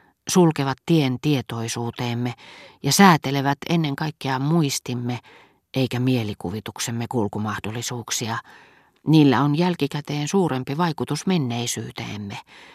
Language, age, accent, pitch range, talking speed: Finnish, 40-59, native, 120-150 Hz, 80 wpm